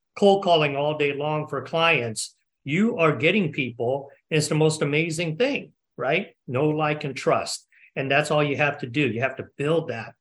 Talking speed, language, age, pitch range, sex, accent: 200 wpm, English, 50-69, 130-160 Hz, male, American